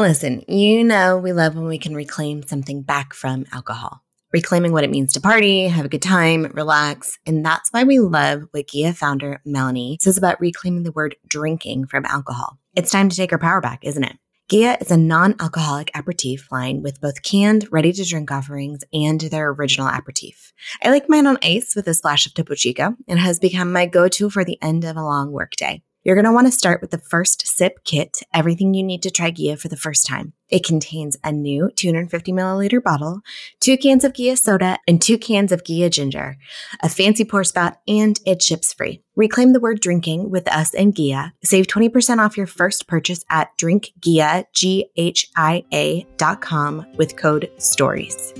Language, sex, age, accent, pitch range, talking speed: English, female, 20-39, American, 150-195 Hz, 195 wpm